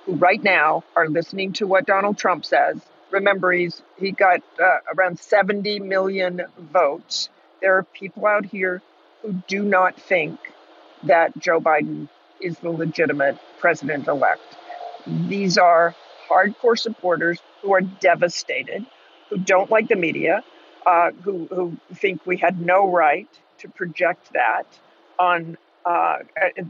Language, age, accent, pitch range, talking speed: English, 50-69, American, 170-205 Hz, 135 wpm